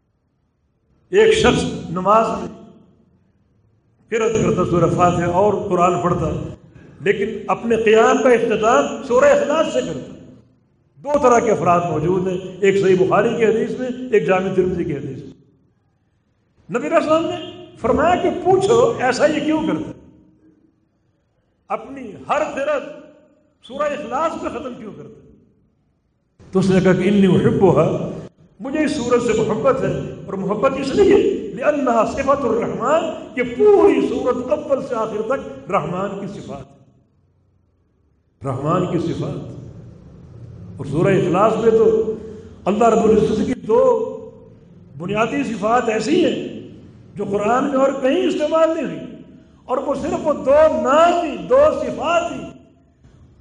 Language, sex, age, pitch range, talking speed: English, male, 50-69, 185-290 Hz, 110 wpm